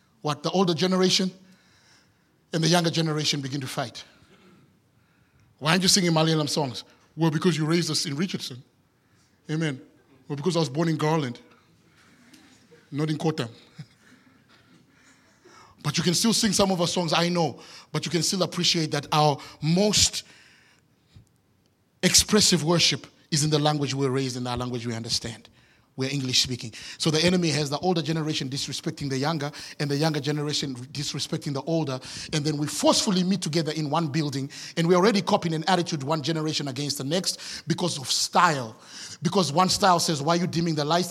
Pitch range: 150-180 Hz